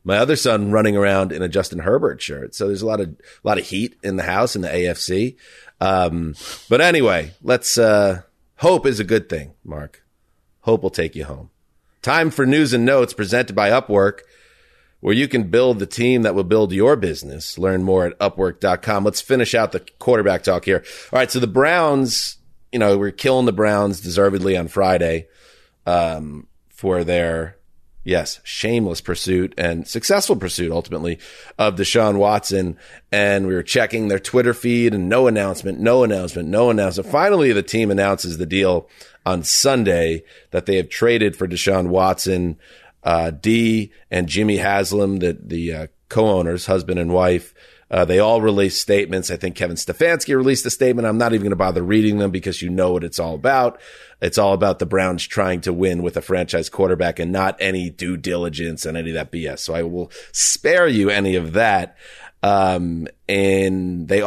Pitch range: 90-110 Hz